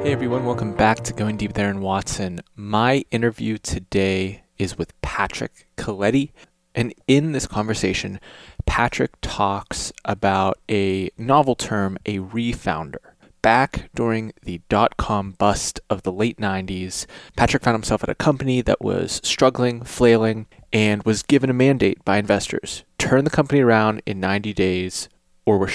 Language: English